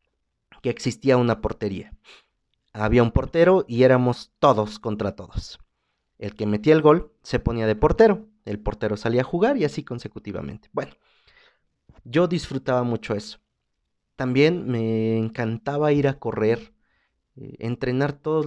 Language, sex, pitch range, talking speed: Spanish, male, 105-135 Hz, 140 wpm